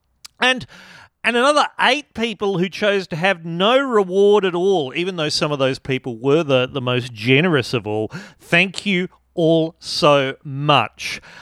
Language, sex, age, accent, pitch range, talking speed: English, male, 40-59, Australian, 130-185 Hz, 165 wpm